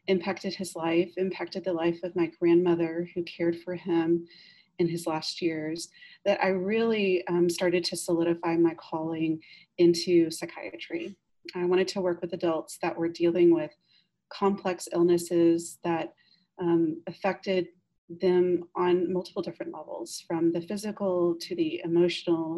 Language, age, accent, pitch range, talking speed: English, 30-49, American, 170-185 Hz, 145 wpm